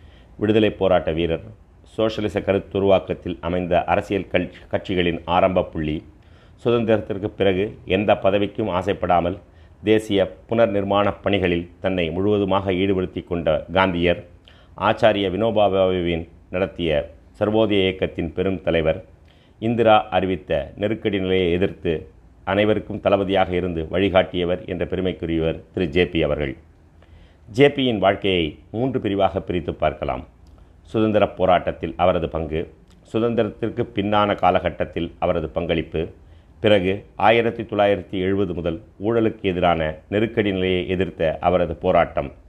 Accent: native